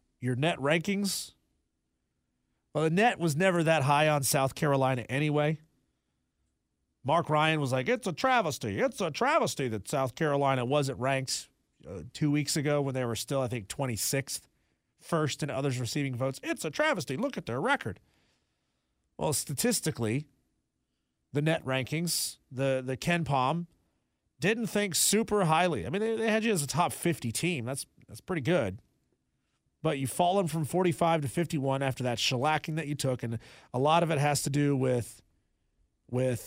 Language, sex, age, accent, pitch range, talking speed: English, male, 40-59, American, 115-170 Hz, 170 wpm